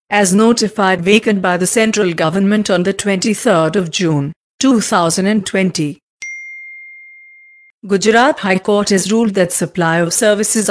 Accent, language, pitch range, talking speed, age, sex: Indian, English, 185-220 Hz, 110 wpm, 50-69, female